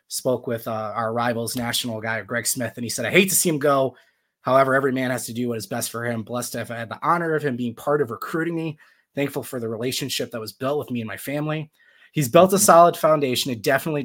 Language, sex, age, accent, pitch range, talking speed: English, male, 20-39, American, 120-150 Hz, 265 wpm